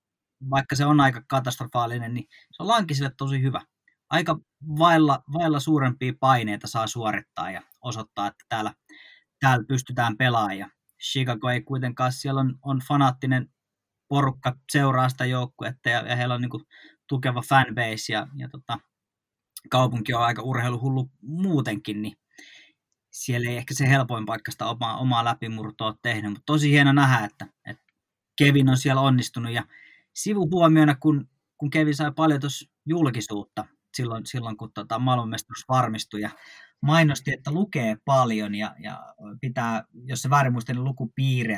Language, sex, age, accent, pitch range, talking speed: Finnish, male, 20-39, native, 115-140 Hz, 150 wpm